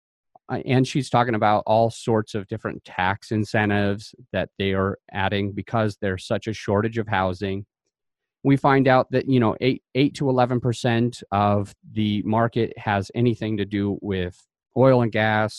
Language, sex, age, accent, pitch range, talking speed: English, male, 30-49, American, 105-125 Hz, 160 wpm